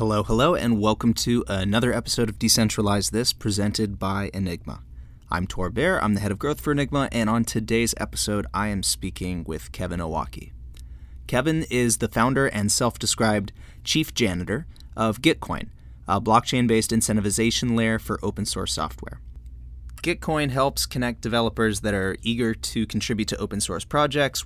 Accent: American